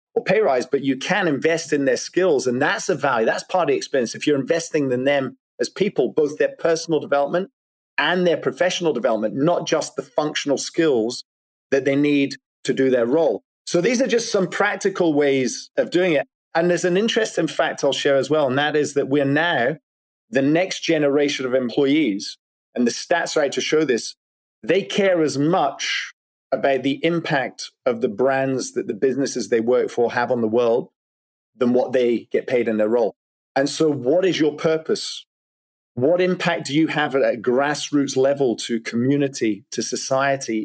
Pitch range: 130-165 Hz